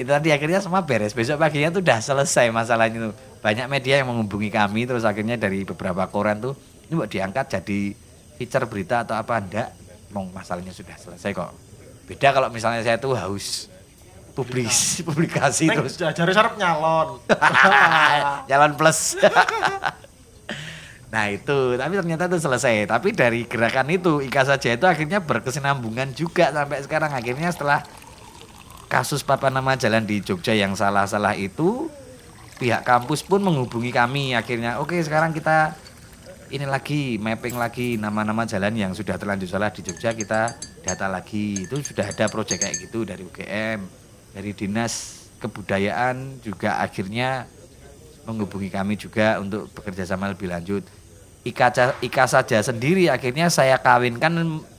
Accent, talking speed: native, 140 wpm